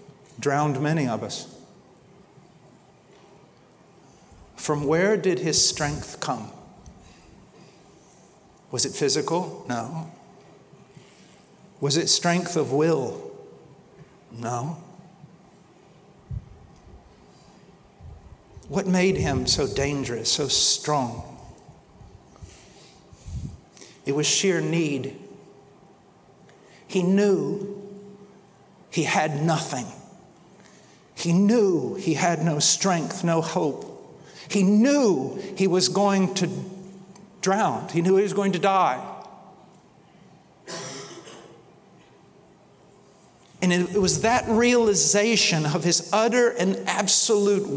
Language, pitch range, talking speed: English, 165-200 Hz, 85 wpm